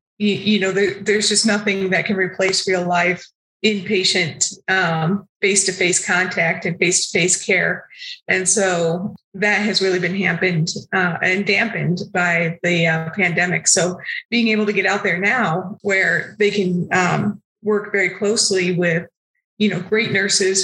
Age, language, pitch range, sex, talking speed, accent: 20-39, English, 180-205 Hz, female, 155 wpm, American